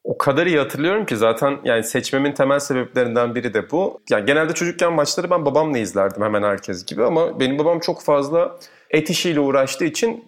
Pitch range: 115-155 Hz